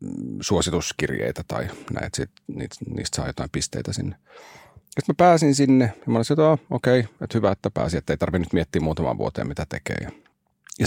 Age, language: 40-59, Finnish